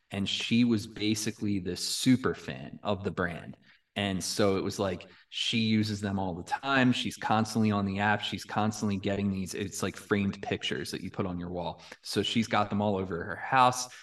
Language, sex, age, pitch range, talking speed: English, male, 20-39, 95-110 Hz, 205 wpm